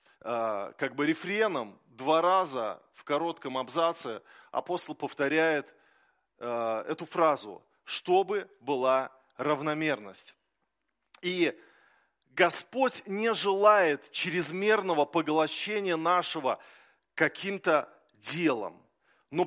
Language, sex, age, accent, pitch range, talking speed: Russian, male, 20-39, native, 150-195 Hz, 75 wpm